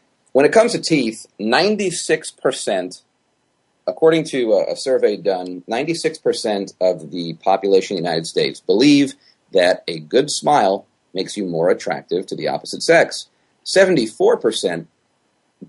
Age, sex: 40-59, male